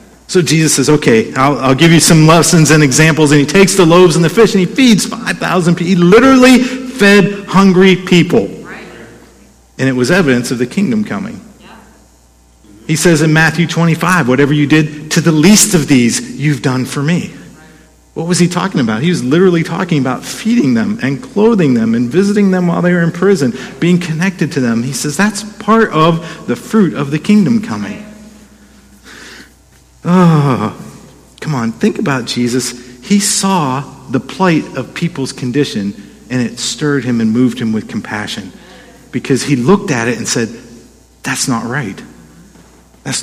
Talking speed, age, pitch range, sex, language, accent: 175 wpm, 50-69, 130-190 Hz, male, English, American